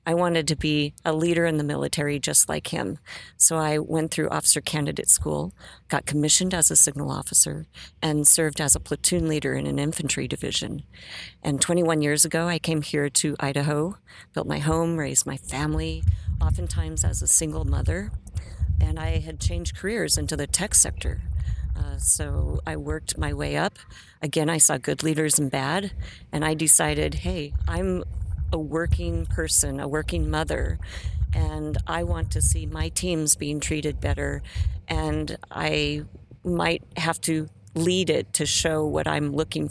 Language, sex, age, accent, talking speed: English, female, 40-59, American, 170 wpm